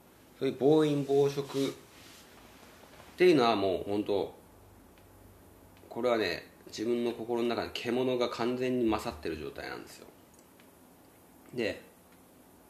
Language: Japanese